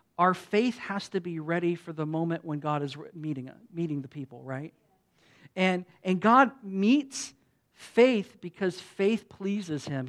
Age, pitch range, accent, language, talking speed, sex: 50-69, 170-215 Hz, American, English, 155 wpm, male